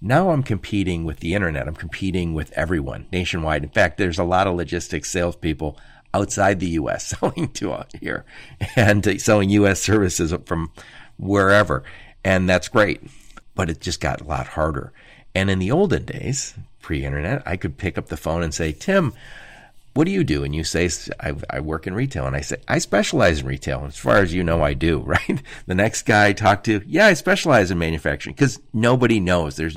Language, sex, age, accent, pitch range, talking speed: English, male, 50-69, American, 80-105 Hz, 200 wpm